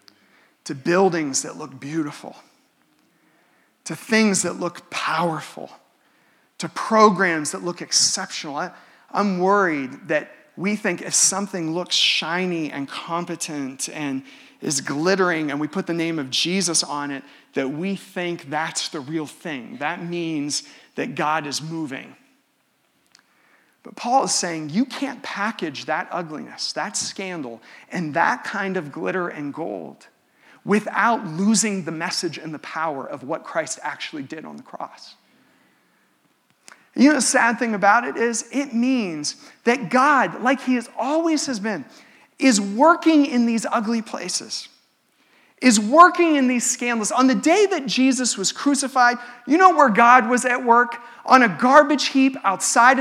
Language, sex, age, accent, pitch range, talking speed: English, male, 40-59, American, 170-255 Hz, 150 wpm